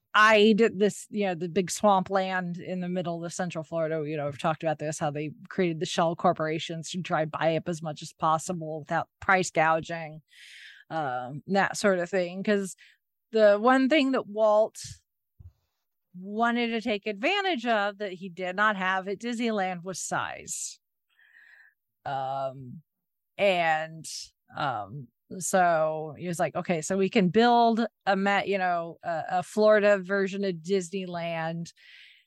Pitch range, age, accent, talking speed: 165-215 Hz, 30-49, American, 155 wpm